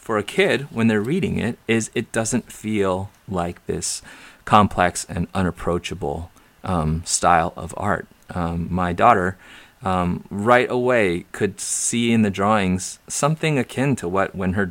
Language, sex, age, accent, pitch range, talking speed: English, male, 30-49, American, 90-115 Hz, 150 wpm